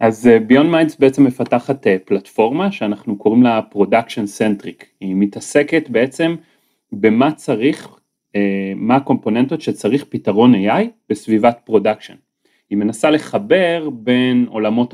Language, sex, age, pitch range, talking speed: Hebrew, male, 30-49, 105-145 Hz, 115 wpm